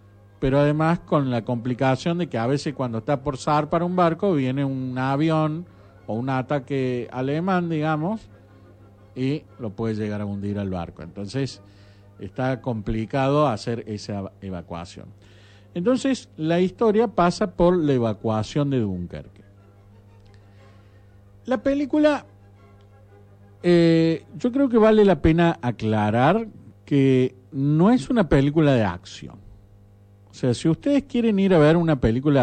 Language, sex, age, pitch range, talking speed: English, male, 50-69, 100-160 Hz, 135 wpm